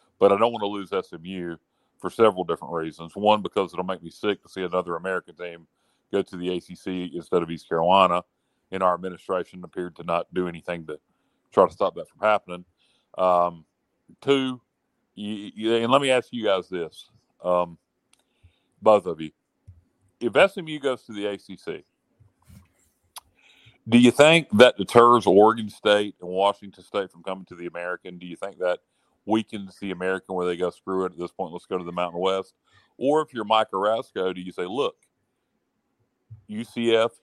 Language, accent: English, American